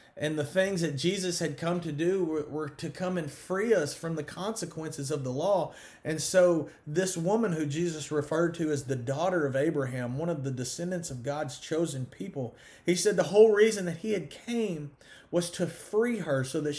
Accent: American